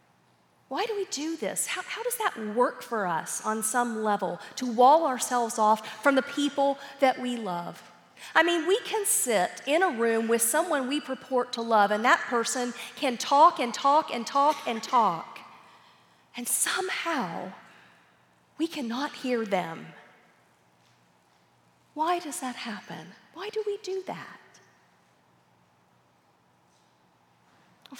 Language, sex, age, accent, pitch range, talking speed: English, female, 40-59, American, 215-290 Hz, 140 wpm